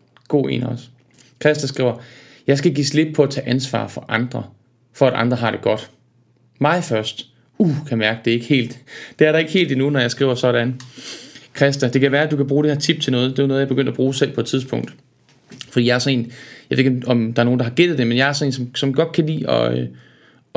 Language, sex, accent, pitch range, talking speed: Danish, male, native, 120-145 Hz, 270 wpm